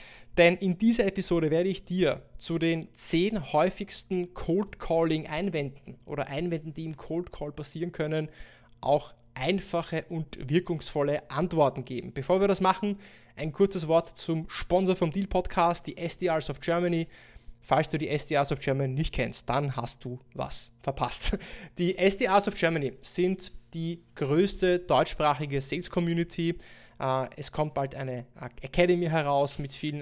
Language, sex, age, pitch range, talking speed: German, male, 20-39, 140-170 Hz, 150 wpm